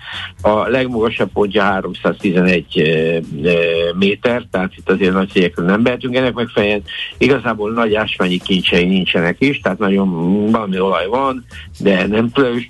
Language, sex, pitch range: Hungarian, male, 95-120 Hz